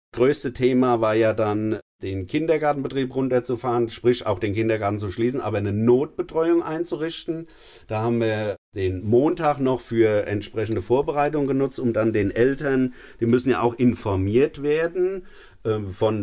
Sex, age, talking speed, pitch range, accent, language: male, 50-69, 145 wpm, 110-135 Hz, German, German